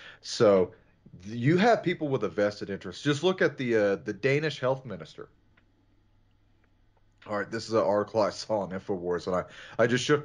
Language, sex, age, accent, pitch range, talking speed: English, male, 30-49, American, 105-145 Hz, 185 wpm